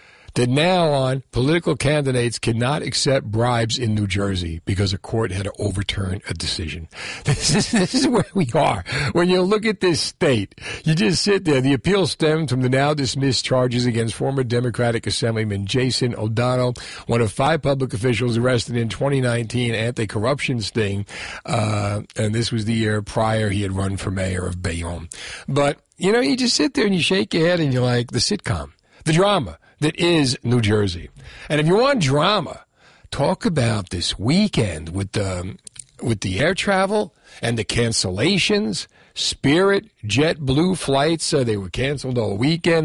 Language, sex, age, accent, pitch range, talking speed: English, male, 50-69, American, 110-145 Hz, 170 wpm